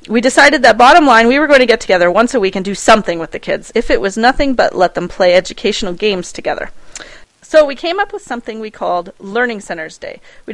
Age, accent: 40-59, American